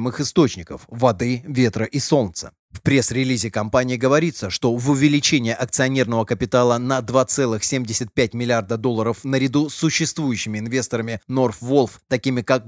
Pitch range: 120-150 Hz